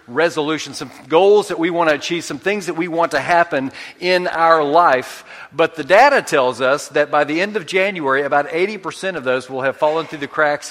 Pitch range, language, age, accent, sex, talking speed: 145-175 Hz, English, 40-59, American, male, 220 wpm